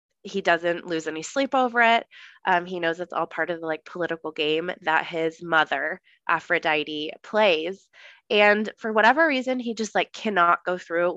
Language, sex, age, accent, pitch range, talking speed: English, female, 20-39, American, 170-210 Hz, 175 wpm